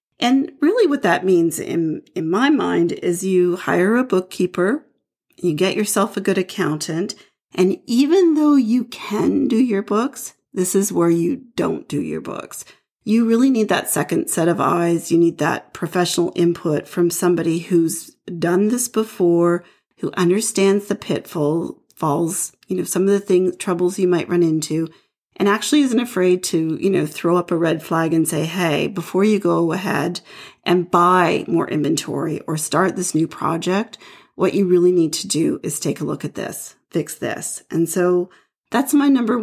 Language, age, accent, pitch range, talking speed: English, 40-59, American, 170-205 Hz, 180 wpm